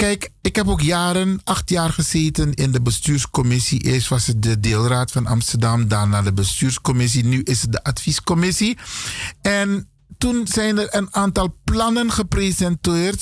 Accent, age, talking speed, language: Dutch, 50-69, 155 wpm, Dutch